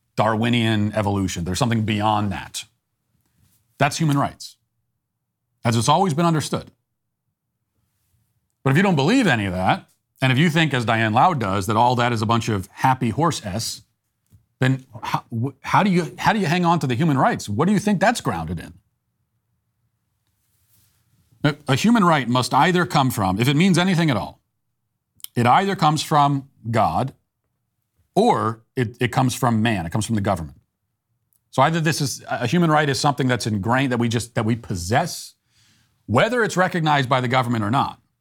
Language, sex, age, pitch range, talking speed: English, male, 40-59, 110-145 Hz, 180 wpm